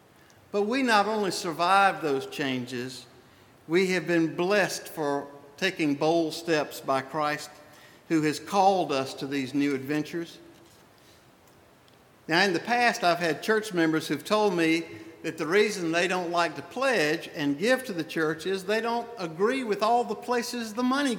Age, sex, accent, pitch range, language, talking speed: 50-69, male, American, 155-215 Hz, English, 165 wpm